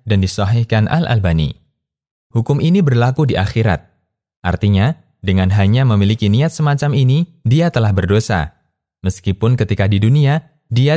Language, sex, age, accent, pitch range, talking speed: Indonesian, male, 20-39, native, 100-140 Hz, 125 wpm